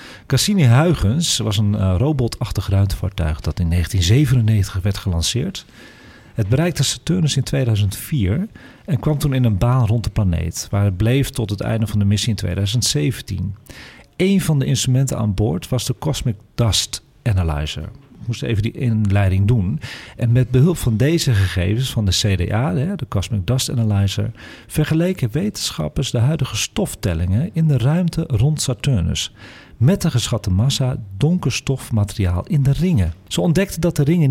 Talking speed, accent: 155 wpm, Dutch